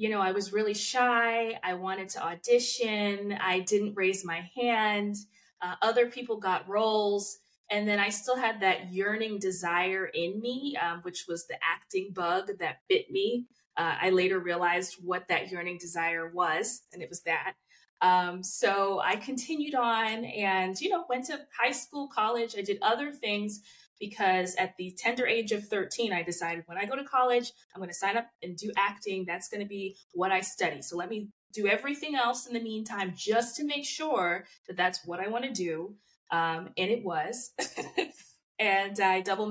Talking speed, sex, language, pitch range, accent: 185 wpm, female, English, 180-230 Hz, American